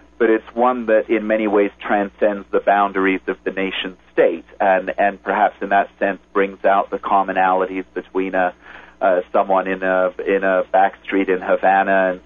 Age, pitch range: 40-59, 95-110 Hz